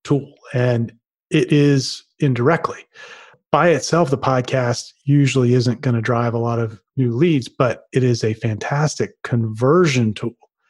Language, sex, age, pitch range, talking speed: English, male, 30-49, 120-145 Hz, 145 wpm